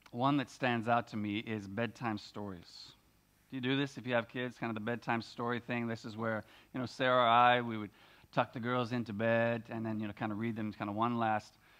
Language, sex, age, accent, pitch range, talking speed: English, male, 40-59, American, 115-135 Hz, 255 wpm